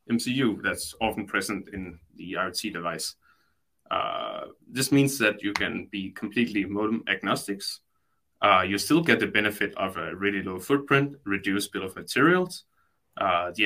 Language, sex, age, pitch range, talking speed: English, male, 20-39, 95-120 Hz, 155 wpm